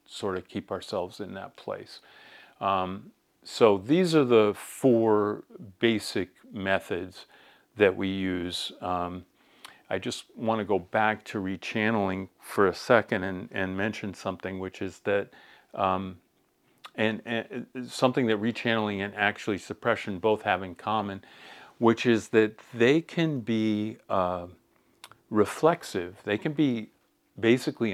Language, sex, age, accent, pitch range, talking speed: English, male, 50-69, American, 95-110 Hz, 135 wpm